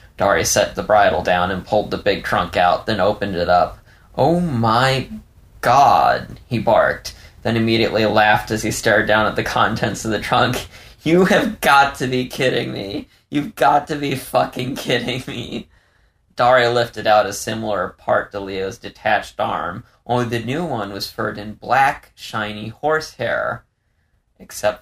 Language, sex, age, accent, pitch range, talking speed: English, male, 20-39, American, 105-130 Hz, 165 wpm